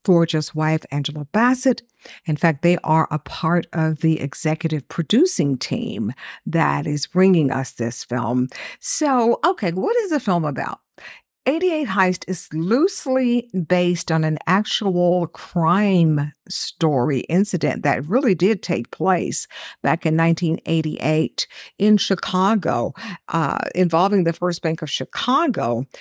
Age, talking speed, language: 50-69, 130 wpm, English